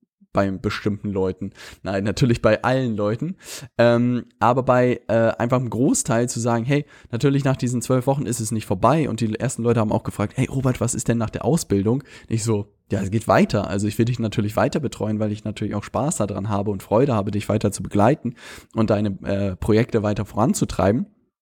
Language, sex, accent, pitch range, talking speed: German, male, German, 105-120 Hz, 215 wpm